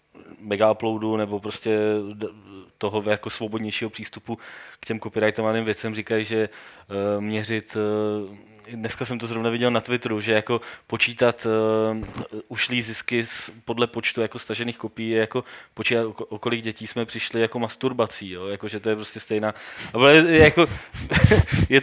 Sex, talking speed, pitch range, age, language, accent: male, 140 wpm, 110-120 Hz, 20-39, Czech, native